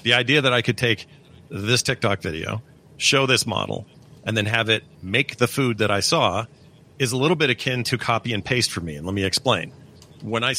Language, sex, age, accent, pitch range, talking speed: English, male, 40-59, American, 105-135 Hz, 220 wpm